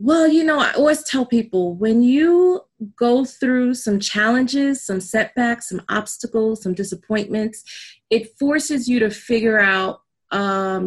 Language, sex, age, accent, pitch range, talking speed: English, female, 30-49, American, 205-255 Hz, 145 wpm